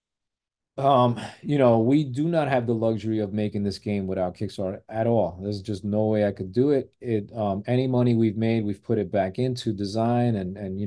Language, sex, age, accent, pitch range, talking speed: English, male, 30-49, American, 100-120 Hz, 220 wpm